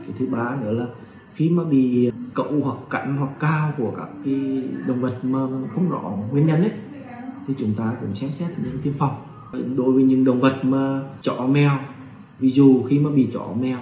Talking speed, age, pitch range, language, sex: 205 wpm, 20-39, 115-140 Hz, Vietnamese, male